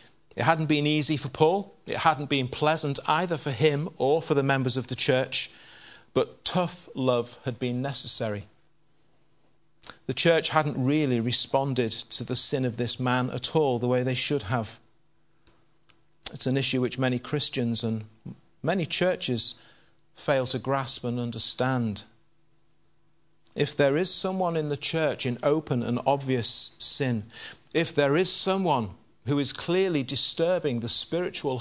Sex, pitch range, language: male, 120-155 Hz, English